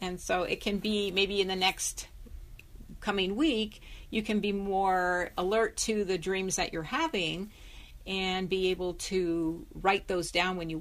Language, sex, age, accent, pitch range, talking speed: English, female, 50-69, American, 170-195 Hz, 170 wpm